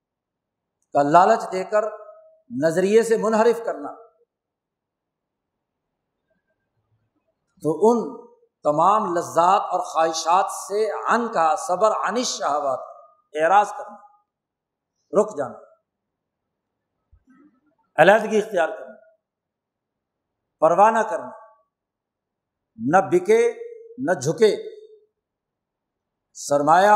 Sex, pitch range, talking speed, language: male, 180-240 Hz, 75 wpm, Urdu